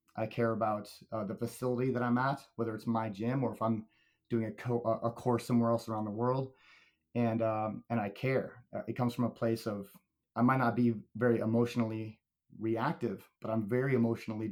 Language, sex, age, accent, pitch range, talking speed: English, male, 30-49, American, 110-120 Hz, 200 wpm